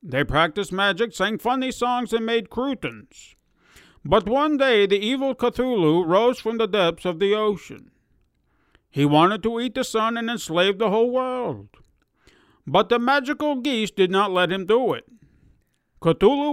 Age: 50-69